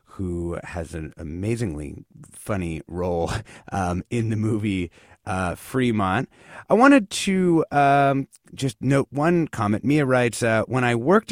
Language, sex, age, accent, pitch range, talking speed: English, male, 30-49, American, 90-135 Hz, 140 wpm